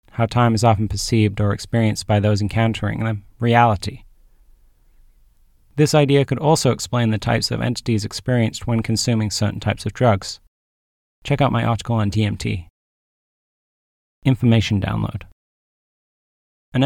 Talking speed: 130 wpm